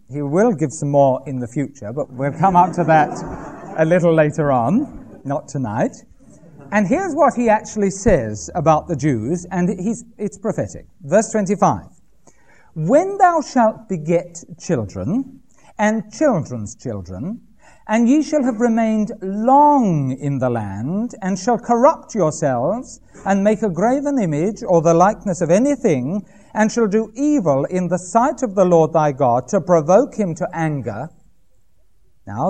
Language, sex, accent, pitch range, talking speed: English, male, British, 165-245 Hz, 155 wpm